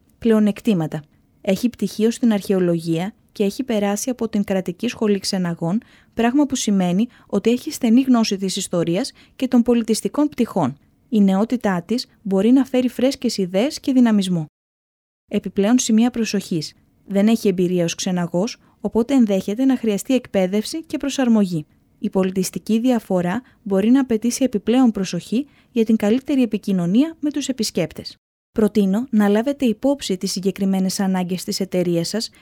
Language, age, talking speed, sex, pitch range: Greek, 20-39, 140 wpm, female, 190-245 Hz